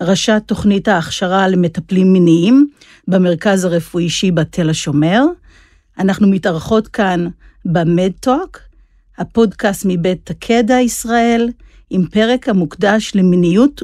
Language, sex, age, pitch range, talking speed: Hebrew, female, 50-69, 180-230 Hz, 95 wpm